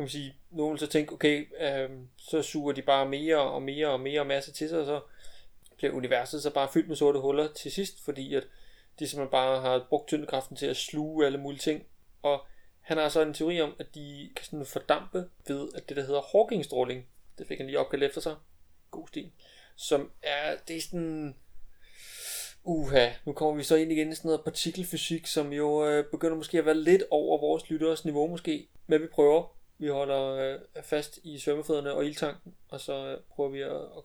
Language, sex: Danish, male